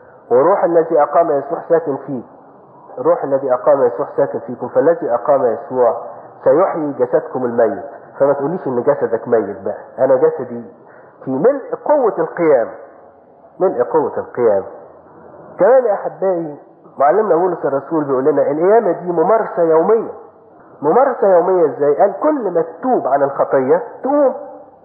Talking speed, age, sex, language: 130 wpm, 50-69, male, English